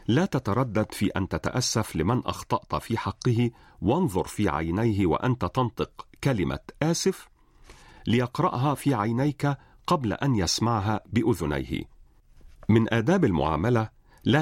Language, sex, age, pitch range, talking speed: Arabic, male, 40-59, 95-125 Hz, 110 wpm